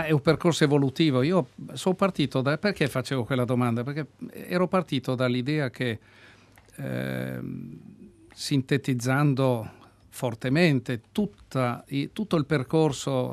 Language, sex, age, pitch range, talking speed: Italian, male, 60-79, 115-140 Hz, 110 wpm